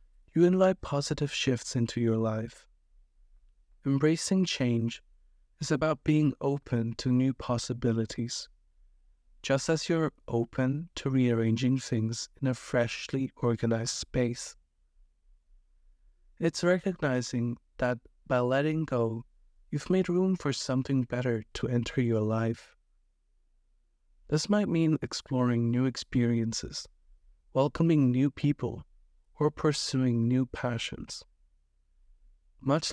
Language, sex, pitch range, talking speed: English, male, 110-140 Hz, 105 wpm